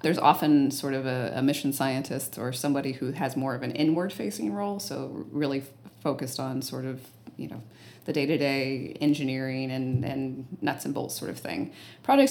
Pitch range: 130-155 Hz